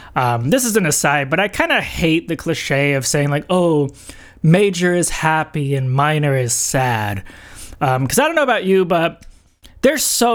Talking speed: 190 wpm